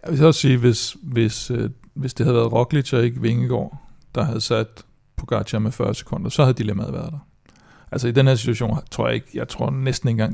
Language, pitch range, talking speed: Danish, 115-130 Hz, 230 wpm